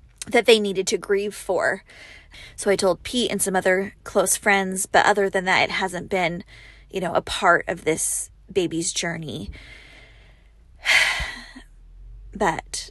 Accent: American